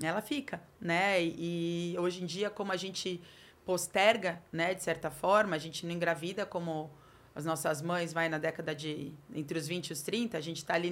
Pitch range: 170-240 Hz